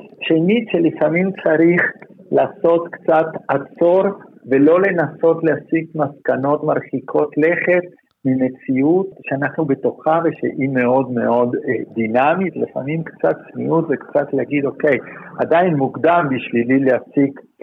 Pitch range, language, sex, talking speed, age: 130-190 Hz, Hebrew, male, 105 wpm, 50-69